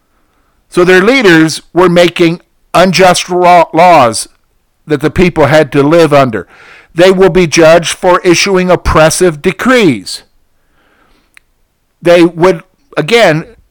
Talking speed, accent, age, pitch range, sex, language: 110 wpm, American, 50-69, 155-200 Hz, male, English